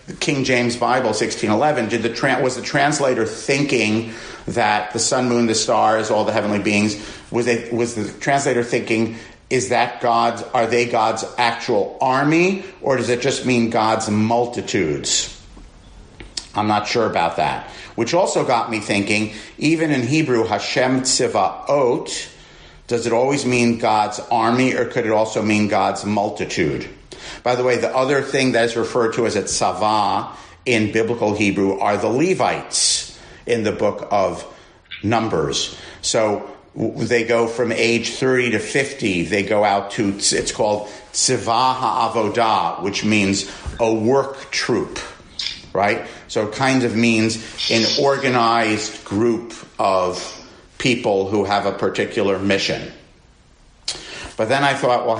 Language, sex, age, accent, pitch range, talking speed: English, male, 50-69, American, 105-125 Hz, 150 wpm